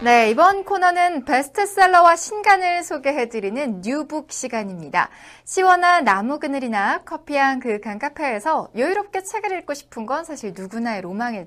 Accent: native